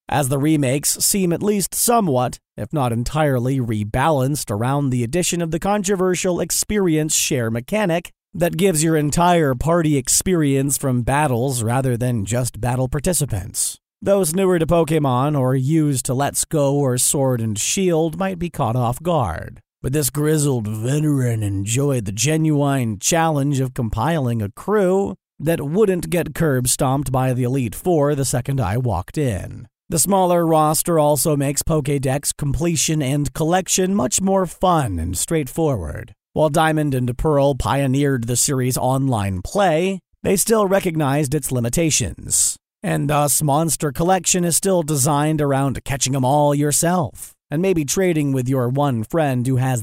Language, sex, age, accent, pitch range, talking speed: English, male, 40-59, American, 130-170 Hz, 150 wpm